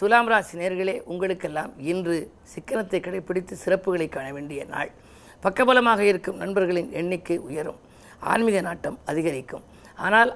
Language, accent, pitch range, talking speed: Tamil, native, 170-200 Hz, 115 wpm